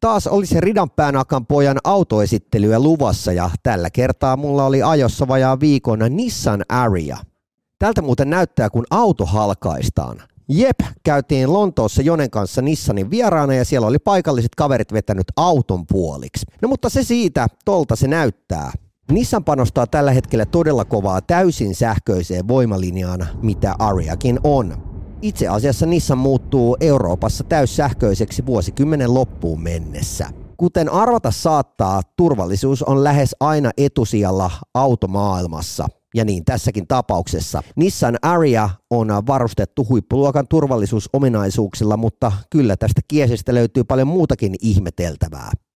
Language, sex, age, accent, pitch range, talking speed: Finnish, male, 30-49, native, 100-140 Hz, 120 wpm